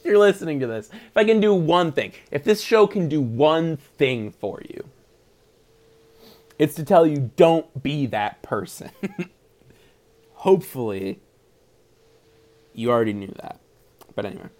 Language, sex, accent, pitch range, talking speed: English, male, American, 125-175 Hz, 140 wpm